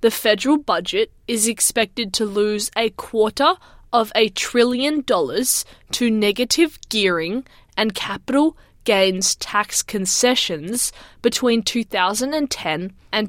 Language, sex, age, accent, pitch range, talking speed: English, female, 20-39, Australian, 205-250 Hz, 110 wpm